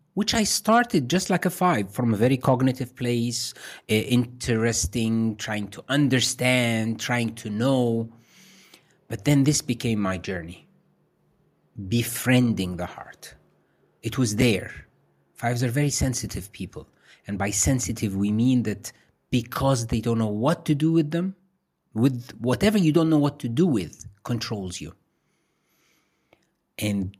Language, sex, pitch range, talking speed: Danish, male, 100-130 Hz, 140 wpm